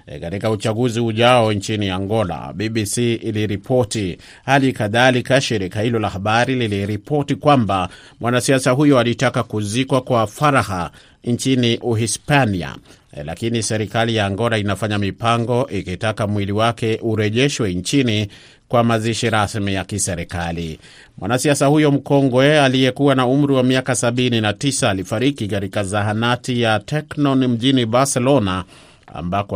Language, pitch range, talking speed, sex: Swahili, 100-125 Hz, 120 wpm, male